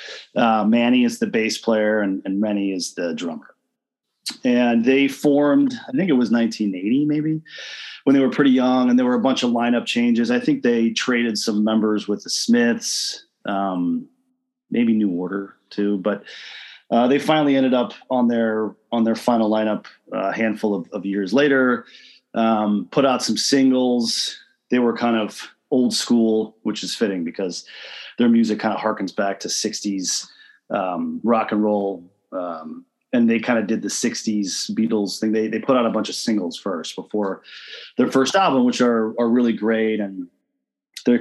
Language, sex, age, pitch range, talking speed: English, male, 30-49, 105-140 Hz, 180 wpm